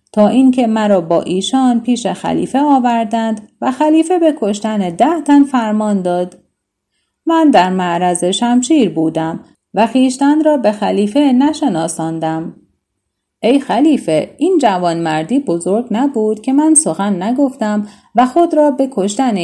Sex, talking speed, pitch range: female, 130 wpm, 185-280 Hz